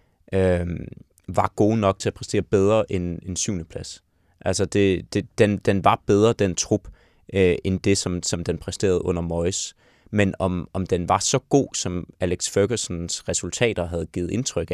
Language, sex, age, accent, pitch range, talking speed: Danish, male, 20-39, native, 90-105 Hz, 180 wpm